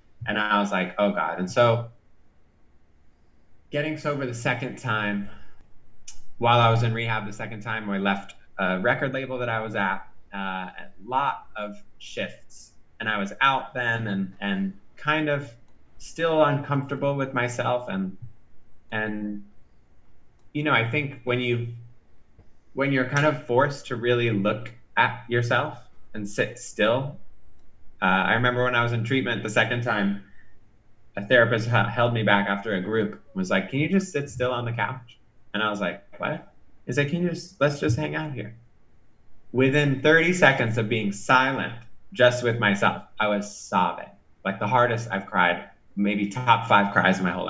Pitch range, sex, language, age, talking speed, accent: 100-125 Hz, male, English, 20-39, 175 wpm, American